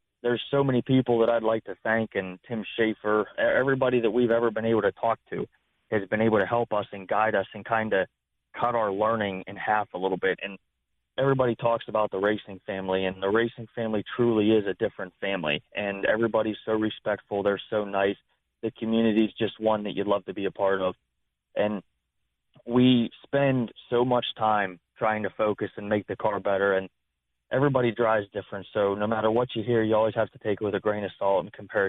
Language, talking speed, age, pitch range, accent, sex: English, 215 wpm, 20-39, 100-115 Hz, American, male